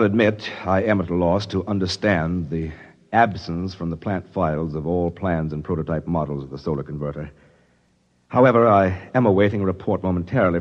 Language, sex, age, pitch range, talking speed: English, male, 60-79, 80-105 Hz, 175 wpm